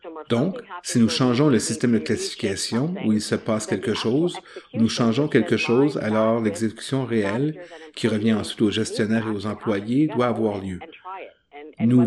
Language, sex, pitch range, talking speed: English, male, 110-145 Hz, 170 wpm